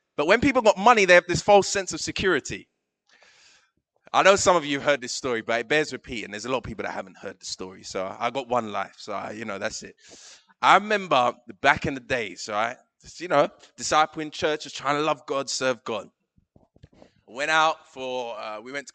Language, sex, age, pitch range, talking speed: English, male, 20-39, 130-200 Hz, 230 wpm